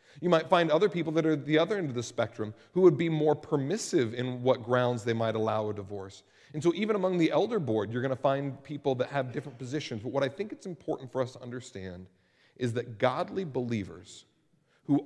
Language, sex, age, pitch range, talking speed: English, male, 40-59, 115-150 Hz, 225 wpm